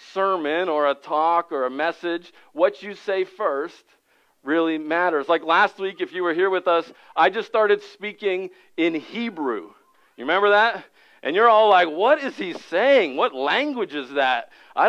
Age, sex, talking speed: 50-69, male, 175 wpm